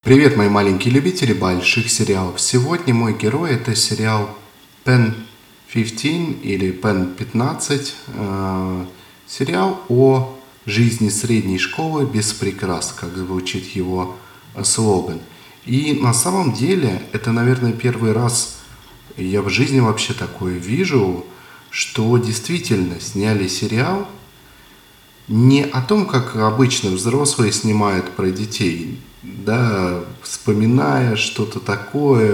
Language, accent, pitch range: Russian, native, 100-135 Hz